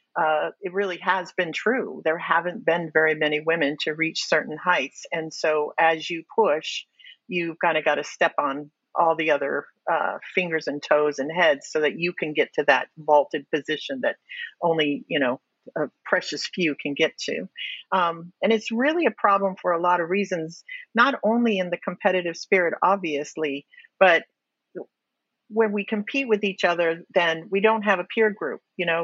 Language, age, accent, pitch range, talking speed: English, 50-69, American, 160-210 Hz, 185 wpm